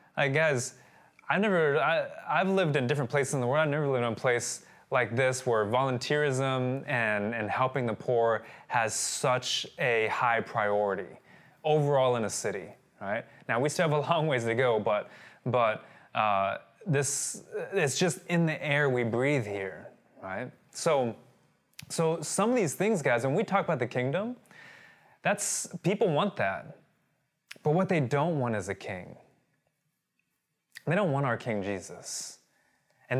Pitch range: 125-160 Hz